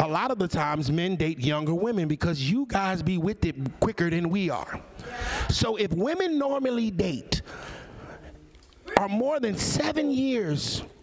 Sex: male